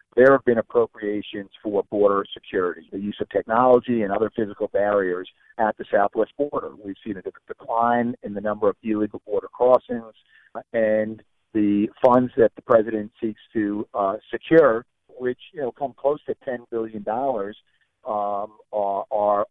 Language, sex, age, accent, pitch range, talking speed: English, male, 50-69, American, 100-125 Hz, 155 wpm